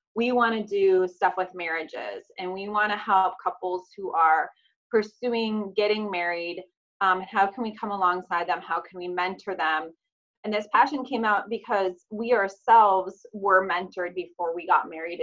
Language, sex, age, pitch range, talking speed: English, female, 20-39, 180-220 Hz, 175 wpm